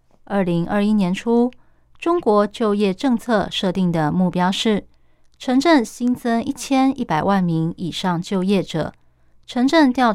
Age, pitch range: 30-49, 170-230 Hz